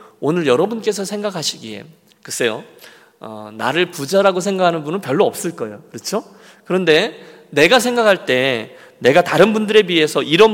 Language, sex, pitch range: Korean, male, 155-215 Hz